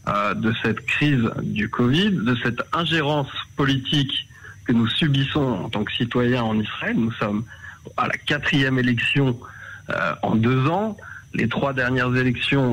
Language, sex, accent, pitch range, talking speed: French, male, French, 115-145 Hz, 155 wpm